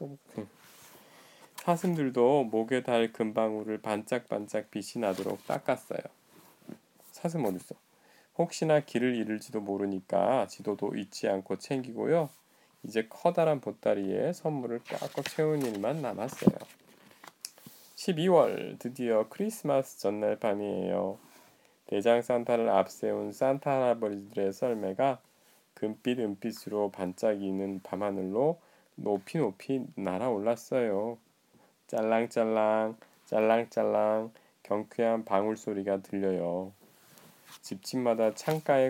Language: Korean